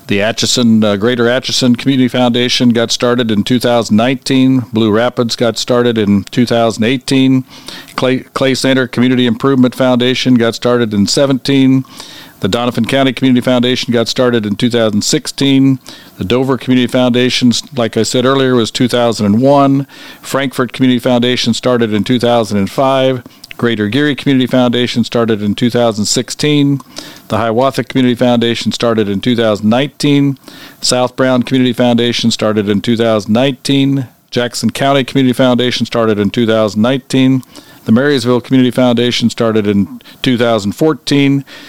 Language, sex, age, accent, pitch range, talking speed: English, male, 50-69, American, 115-130 Hz, 125 wpm